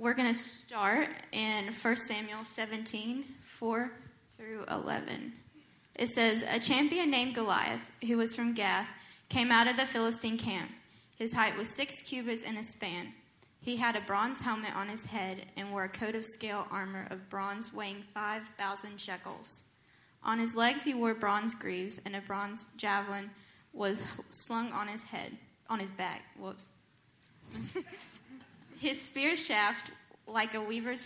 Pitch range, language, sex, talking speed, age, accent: 200-230 Hz, English, female, 155 wpm, 10-29, American